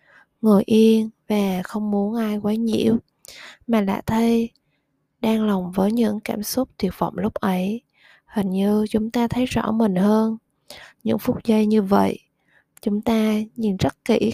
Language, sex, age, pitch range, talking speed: Vietnamese, female, 20-39, 195-230 Hz, 165 wpm